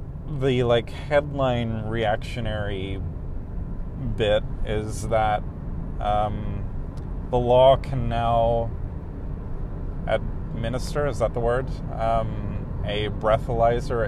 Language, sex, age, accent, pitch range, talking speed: English, male, 30-49, American, 100-125 Hz, 85 wpm